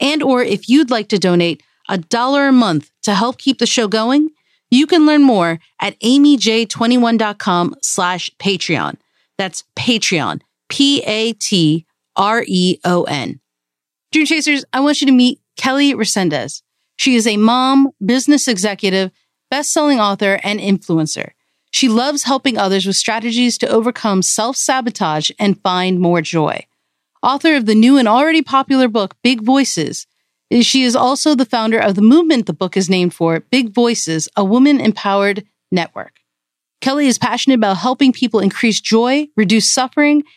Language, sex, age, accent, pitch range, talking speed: English, female, 40-59, American, 195-270 Hz, 145 wpm